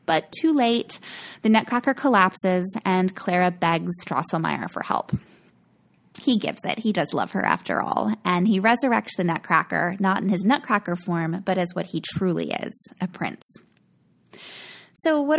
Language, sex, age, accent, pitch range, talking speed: English, female, 20-39, American, 175-240 Hz, 160 wpm